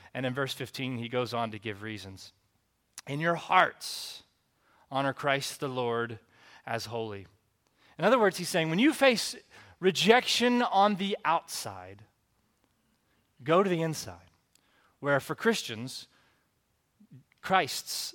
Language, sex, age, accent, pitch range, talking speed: English, male, 30-49, American, 120-195 Hz, 130 wpm